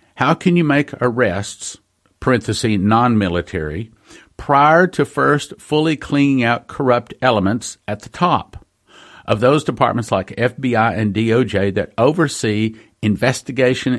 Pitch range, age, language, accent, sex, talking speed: 110-140 Hz, 50-69, English, American, male, 120 wpm